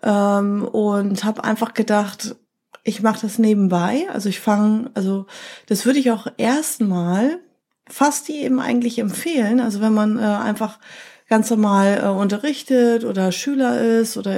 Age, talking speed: 30-49, 140 wpm